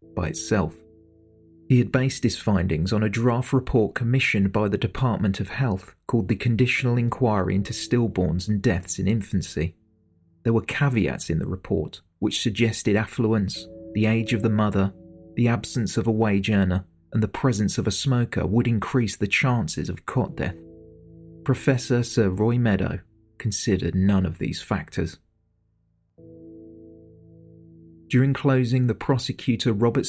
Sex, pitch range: male, 95-120 Hz